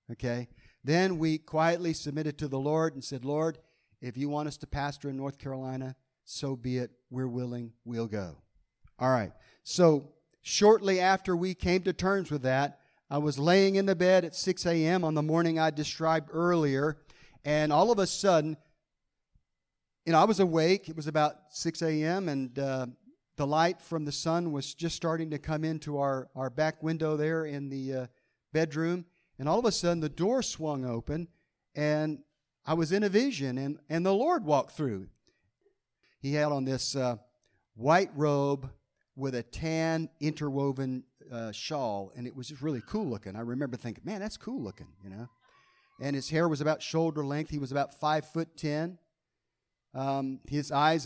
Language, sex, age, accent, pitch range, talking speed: English, male, 50-69, American, 130-165 Hz, 180 wpm